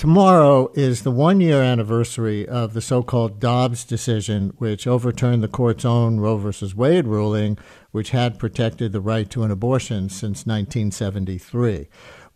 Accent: American